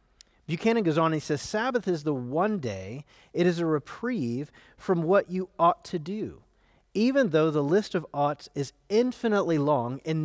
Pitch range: 145-220 Hz